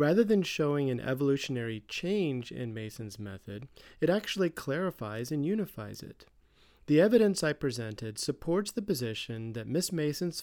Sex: male